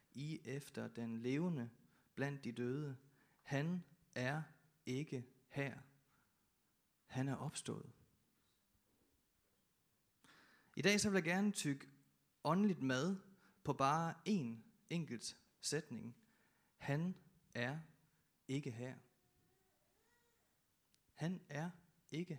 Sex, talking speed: male, 95 wpm